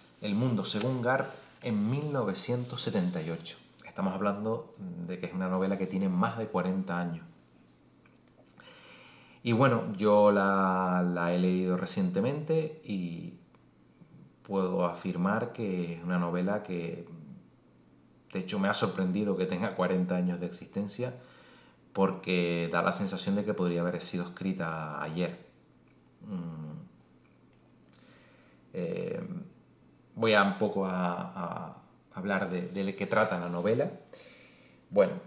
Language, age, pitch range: Spanish, 30-49, 90-125 Hz